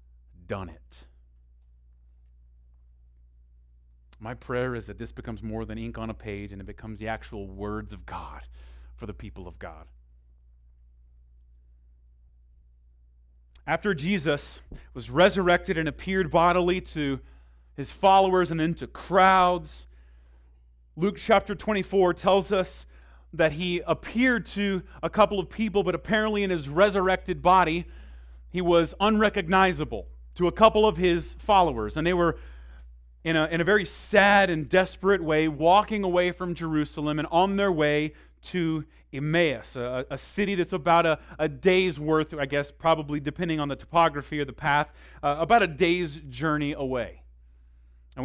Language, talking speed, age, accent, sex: English, 145 wpm, 30-49, American, male